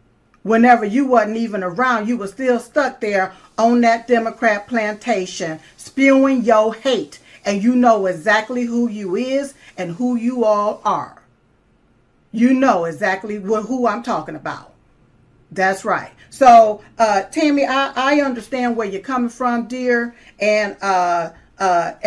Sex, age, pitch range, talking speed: female, 40-59, 195-250 Hz, 140 wpm